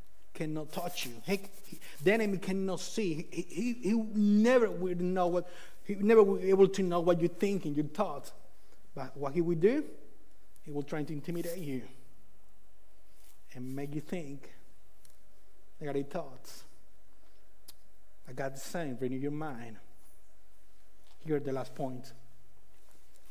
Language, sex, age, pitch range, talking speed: English, male, 30-49, 135-175 Hz, 155 wpm